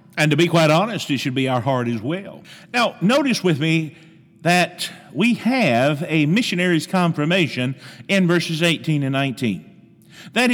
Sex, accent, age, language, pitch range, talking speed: male, American, 50-69, English, 155-200 Hz, 160 wpm